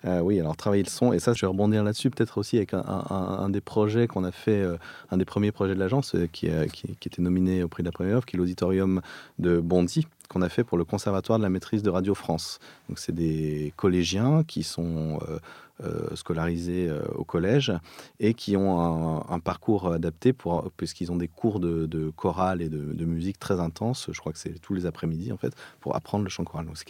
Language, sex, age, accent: French, male, 30-49, French